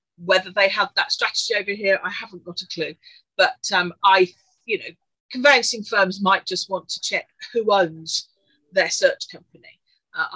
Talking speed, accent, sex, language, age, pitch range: 175 wpm, British, female, English, 40-59, 180-275 Hz